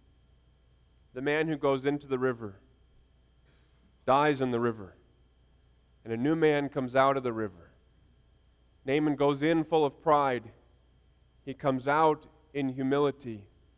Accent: American